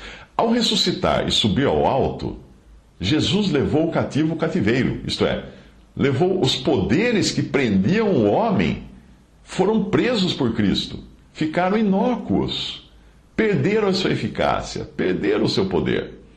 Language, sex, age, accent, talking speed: English, male, 60-79, Brazilian, 130 wpm